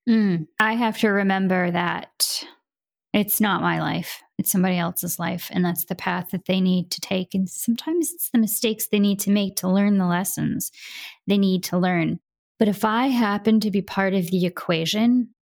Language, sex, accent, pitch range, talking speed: English, female, American, 180-220 Hz, 195 wpm